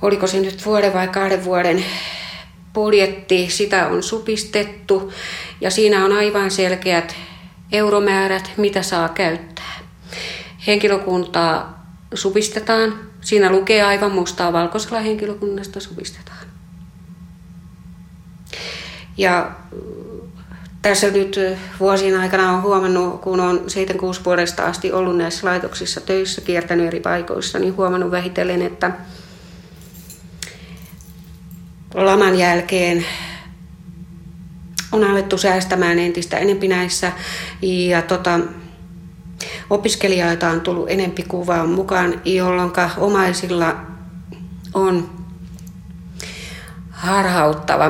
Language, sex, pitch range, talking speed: Finnish, female, 165-195 Hz, 90 wpm